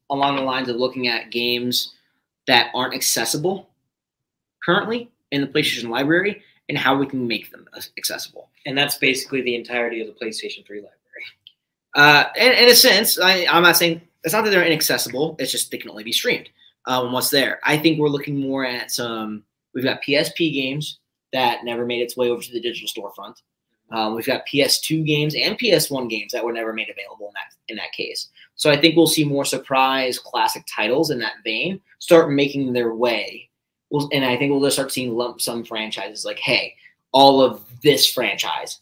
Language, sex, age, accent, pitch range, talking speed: English, male, 20-39, American, 120-150 Hz, 195 wpm